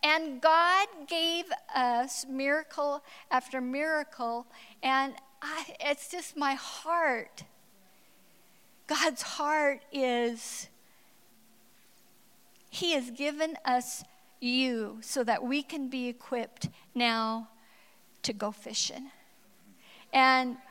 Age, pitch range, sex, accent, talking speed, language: 50-69, 235-280 Hz, female, American, 95 wpm, English